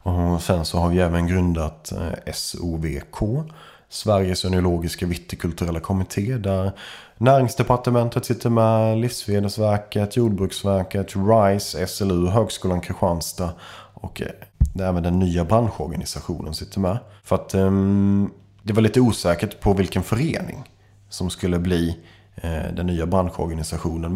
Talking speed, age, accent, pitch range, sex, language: 110 wpm, 30-49, Swedish, 90-110 Hz, male, English